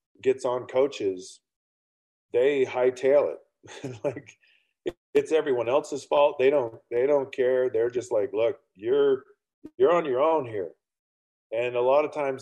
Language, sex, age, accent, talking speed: English, male, 40-59, American, 150 wpm